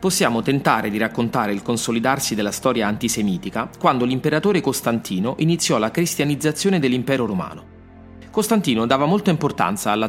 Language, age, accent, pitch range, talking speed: Italian, 30-49, native, 115-170 Hz, 130 wpm